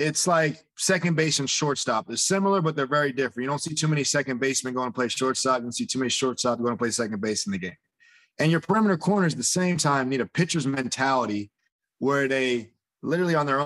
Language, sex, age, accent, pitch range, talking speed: English, male, 20-39, American, 125-150 Hz, 235 wpm